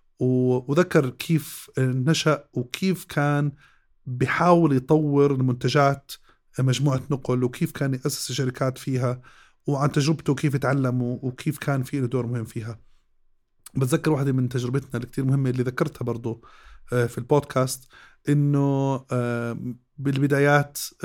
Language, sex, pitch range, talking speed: Arabic, male, 125-145 Hz, 110 wpm